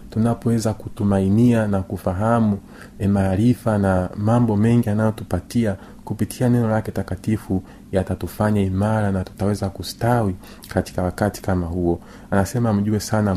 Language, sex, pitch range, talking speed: Swahili, male, 95-110 Hz, 120 wpm